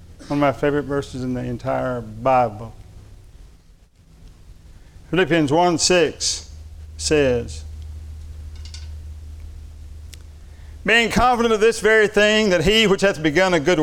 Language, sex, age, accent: English, male, 50-69, American